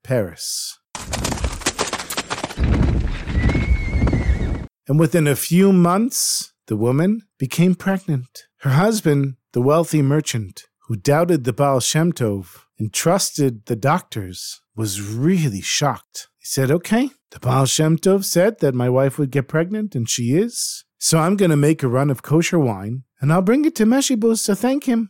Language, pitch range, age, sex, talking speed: English, 125-175 Hz, 50-69, male, 155 wpm